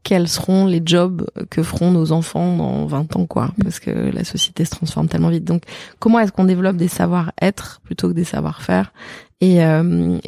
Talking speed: 195 wpm